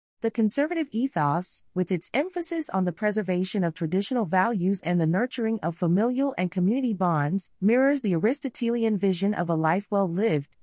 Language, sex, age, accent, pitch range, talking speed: English, female, 40-59, American, 175-230 Hz, 160 wpm